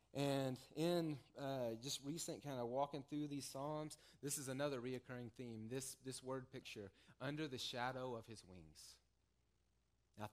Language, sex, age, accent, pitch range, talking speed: English, male, 30-49, American, 100-130 Hz, 155 wpm